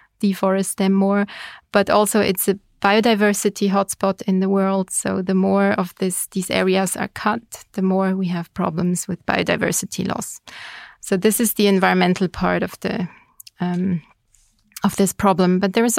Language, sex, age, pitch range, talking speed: Finnish, female, 20-39, 190-215 Hz, 165 wpm